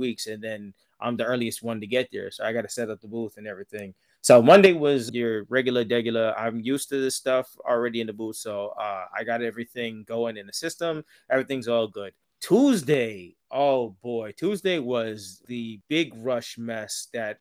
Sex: male